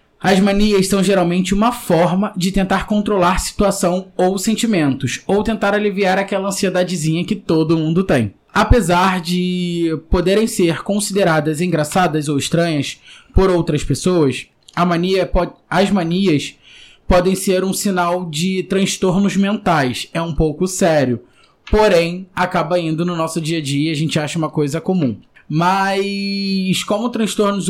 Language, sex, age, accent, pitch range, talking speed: Portuguese, male, 20-39, Brazilian, 165-195 Hz, 135 wpm